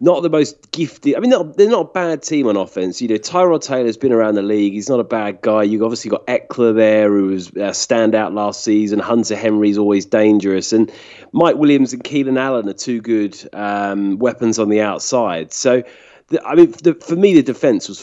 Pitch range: 105-125 Hz